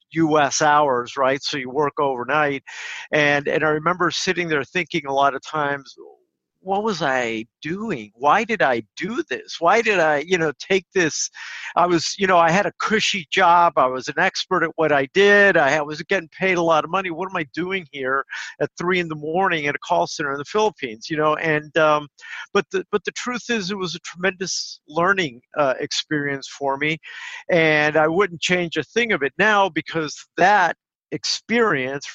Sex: male